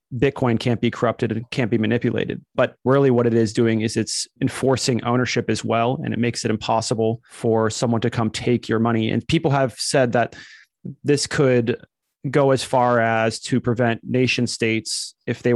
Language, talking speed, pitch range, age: English, 190 wpm, 115-130 Hz, 30-49